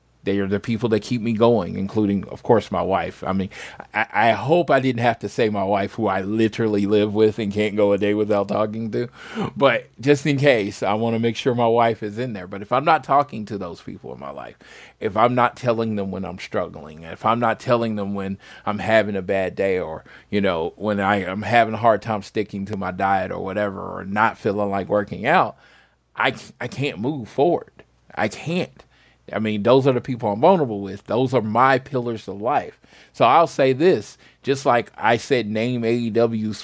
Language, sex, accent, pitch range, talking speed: English, male, American, 100-120 Hz, 220 wpm